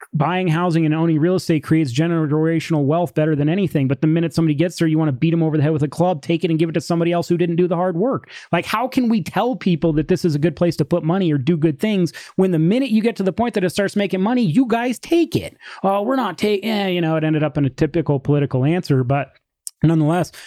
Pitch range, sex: 150-185 Hz, male